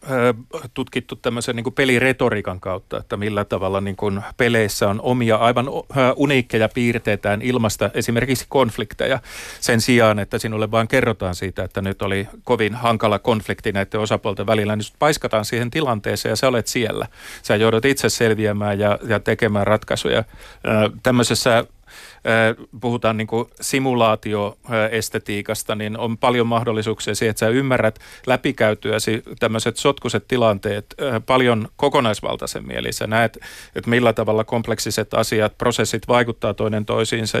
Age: 40-59